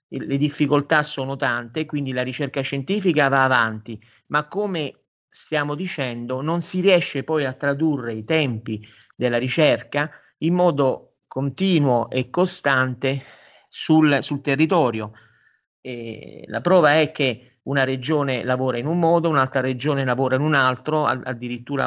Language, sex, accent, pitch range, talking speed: Italian, male, native, 125-150 Hz, 135 wpm